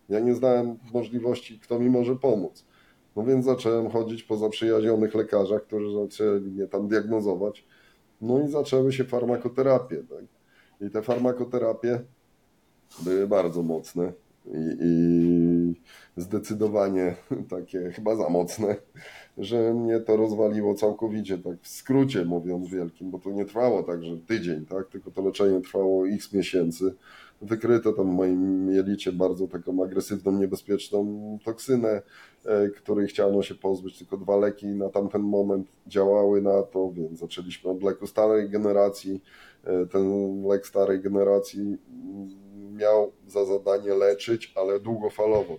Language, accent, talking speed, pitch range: Polish, native, 135 wpm, 95-110 Hz